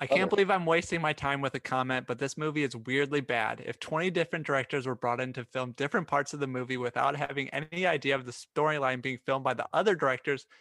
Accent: American